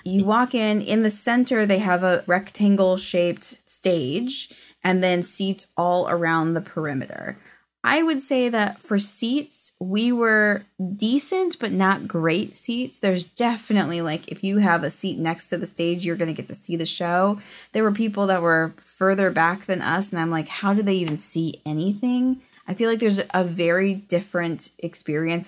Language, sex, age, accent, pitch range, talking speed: English, female, 20-39, American, 170-215 Hz, 180 wpm